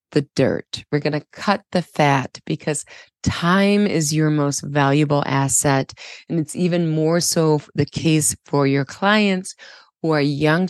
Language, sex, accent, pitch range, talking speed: English, female, American, 140-165 Hz, 155 wpm